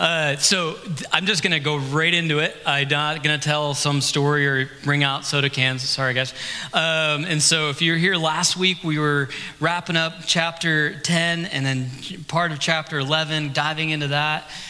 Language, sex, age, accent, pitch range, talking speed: English, male, 30-49, American, 150-180 Hz, 185 wpm